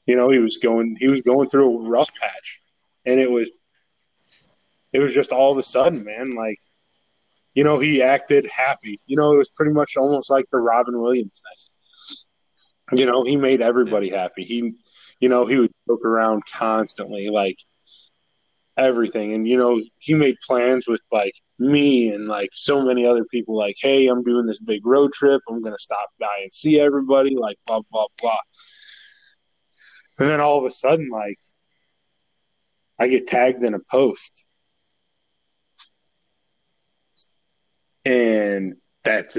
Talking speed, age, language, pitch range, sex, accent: 160 wpm, 20-39, English, 110-135 Hz, male, American